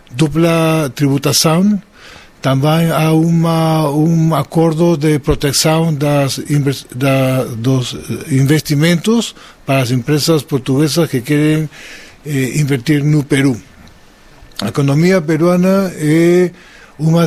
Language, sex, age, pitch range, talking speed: Portuguese, male, 50-69, 140-170 Hz, 95 wpm